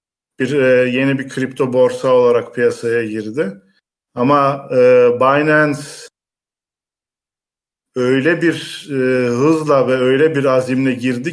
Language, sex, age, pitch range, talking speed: Turkish, male, 50-69, 125-160 Hz, 110 wpm